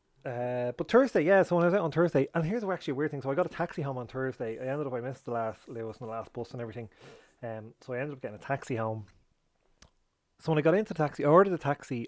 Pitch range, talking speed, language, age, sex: 120-150 Hz, 295 wpm, English, 30-49, male